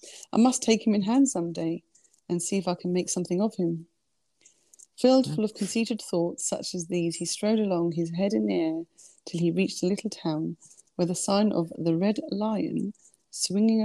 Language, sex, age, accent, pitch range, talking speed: English, female, 30-49, British, 170-210 Hz, 205 wpm